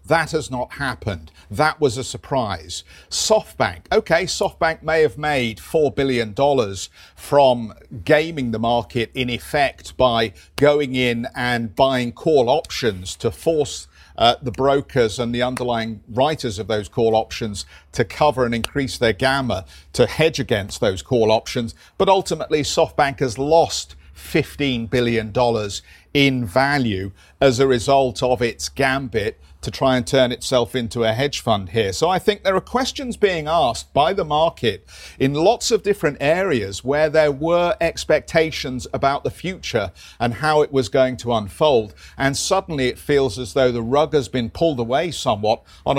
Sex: male